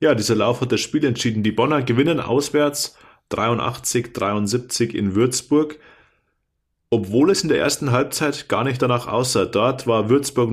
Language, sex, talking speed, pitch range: German, male, 155 wpm, 110-130 Hz